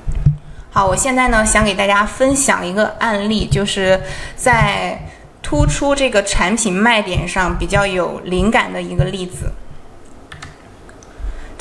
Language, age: Chinese, 20-39